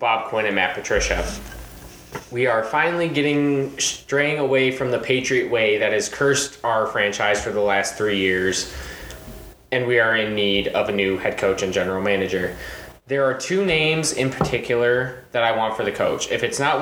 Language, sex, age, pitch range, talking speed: English, male, 20-39, 105-130 Hz, 190 wpm